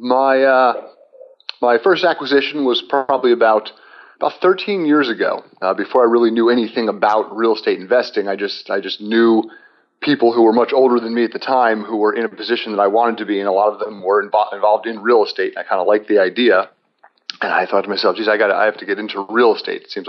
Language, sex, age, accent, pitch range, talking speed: English, male, 40-59, American, 105-130 Hz, 240 wpm